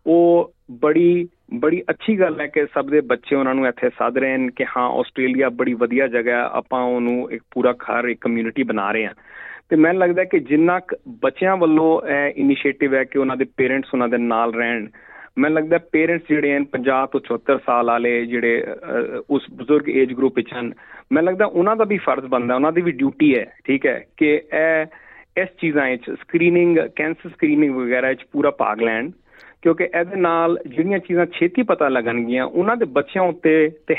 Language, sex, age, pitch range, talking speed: Punjabi, male, 40-59, 130-170 Hz, 190 wpm